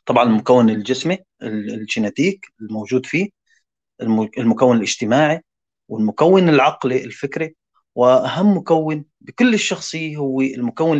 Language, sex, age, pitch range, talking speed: Arabic, male, 30-49, 120-155 Hz, 95 wpm